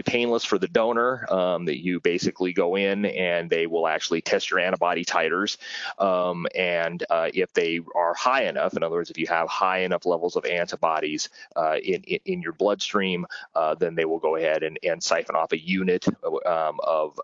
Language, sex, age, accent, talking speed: Italian, male, 30-49, American, 200 wpm